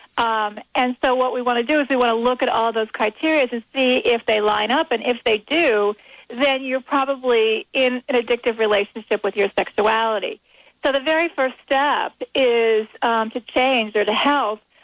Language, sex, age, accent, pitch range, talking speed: English, female, 40-59, American, 230-275 Hz, 200 wpm